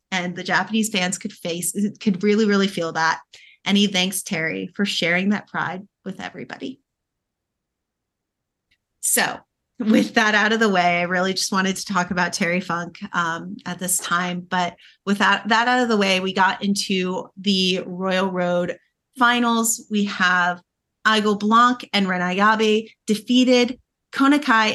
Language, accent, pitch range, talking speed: English, American, 185-235 Hz, 155 wpm